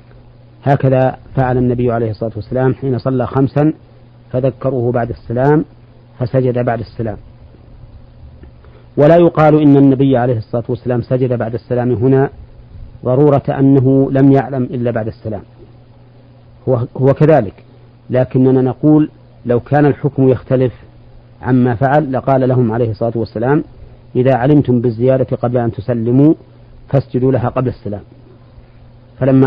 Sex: male